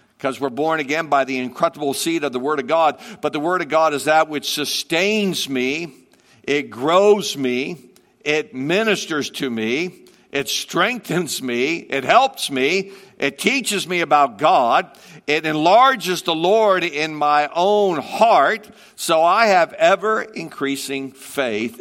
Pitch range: 140-185 Hz